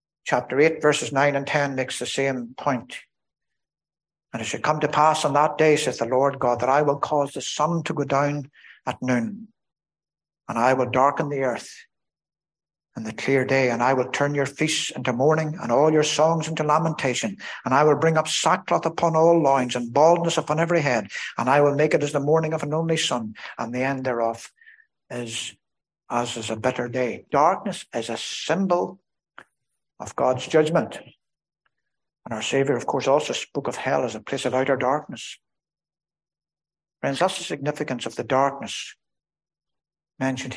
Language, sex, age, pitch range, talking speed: English, male, 60-79, 130-155 Hz, 185 wpm